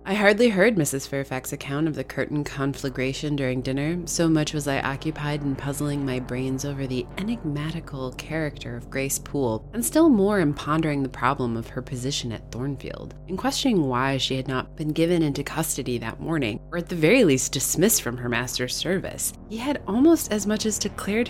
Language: English